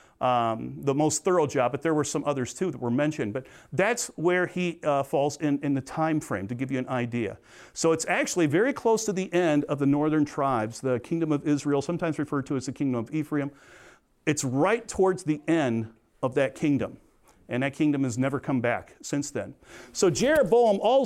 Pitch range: 145-185 Hz